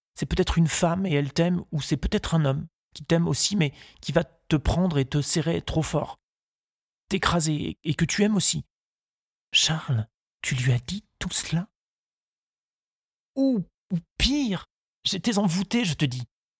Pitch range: 140-170 Hz